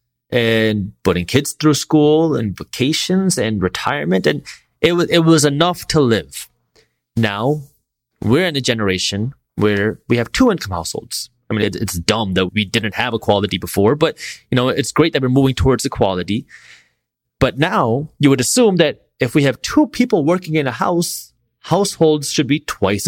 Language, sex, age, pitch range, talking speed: English, male, 30-49, 110-145 Hz, 175 wpm